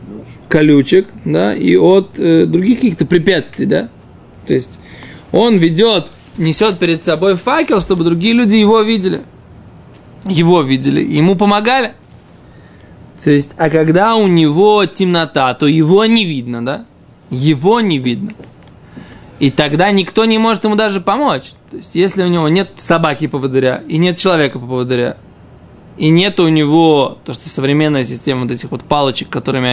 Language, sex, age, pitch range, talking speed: Russian, male, 20-39, 145-195 Hz, 145 wpm